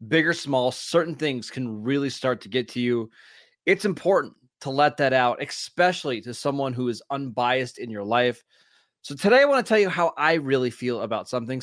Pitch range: 120-155 Hz